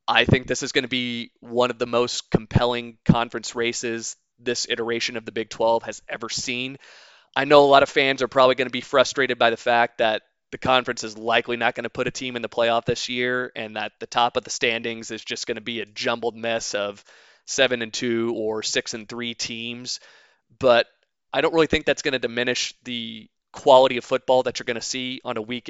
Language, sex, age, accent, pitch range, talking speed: English, male, 20-39, American, 115-130 Hz, 230 wpm